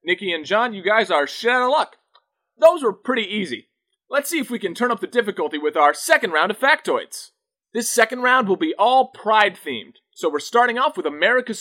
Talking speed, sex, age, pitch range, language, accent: 215 wpm, male, 30-49, 200-260 Hz, English, American